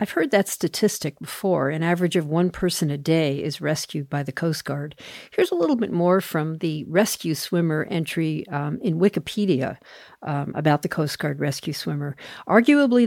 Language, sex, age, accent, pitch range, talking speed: English, female, 50-69, American, 155-195 Hz, 180 wpm